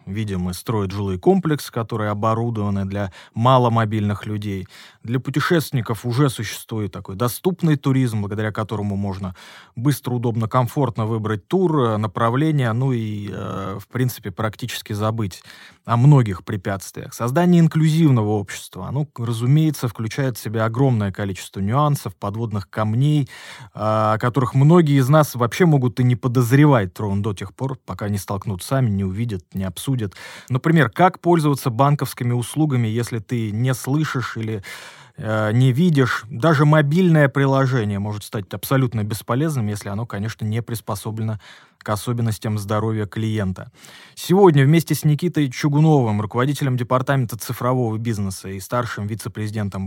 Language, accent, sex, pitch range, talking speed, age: Russian, native, male, 105-135 Hz, 135 wpm, 20-39